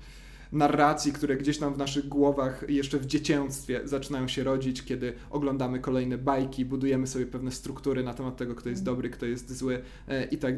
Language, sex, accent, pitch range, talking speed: Polish, male, native, 135-170 Hz, 180 wpm